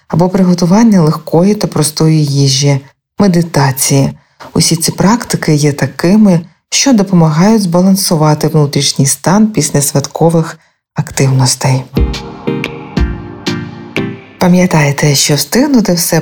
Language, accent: Ukrainian, native